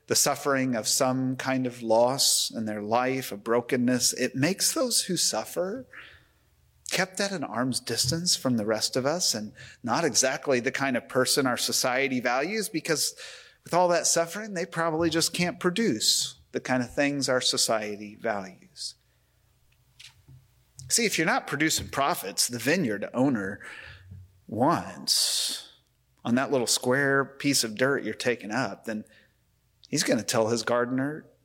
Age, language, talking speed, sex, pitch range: 30-49, English, 155 wpm, male, 115-145 Hz